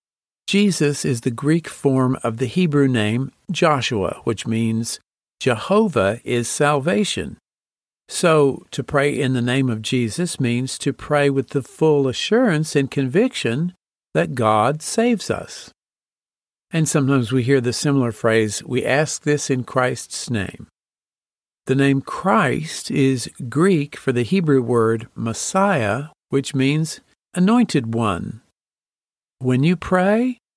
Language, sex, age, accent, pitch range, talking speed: English, male, 50-69, American, 130-170 Hz, 130 wpm